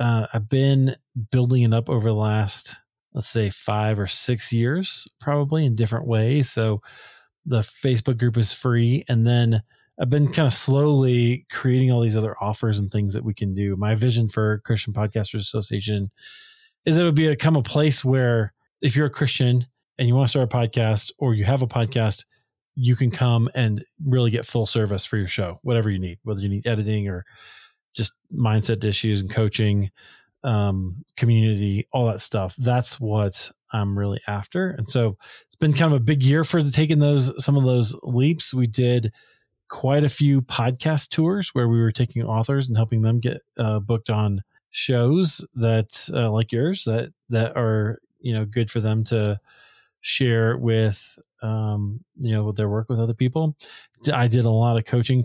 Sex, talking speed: male, 190 wpm